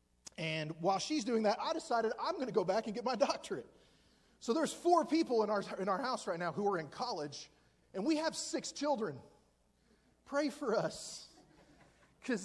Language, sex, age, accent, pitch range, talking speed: English, male, 30-49, American, 205-265 Hz, 195 wpm